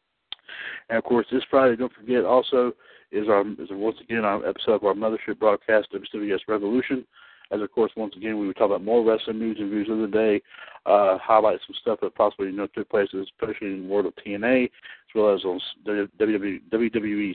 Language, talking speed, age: English, 210 wpm, 60-79